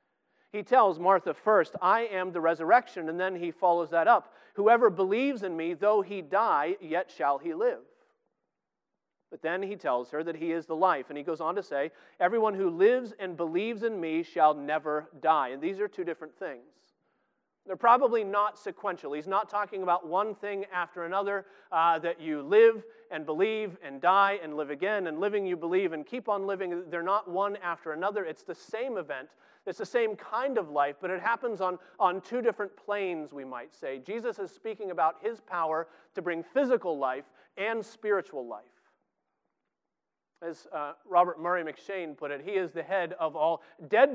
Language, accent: English, American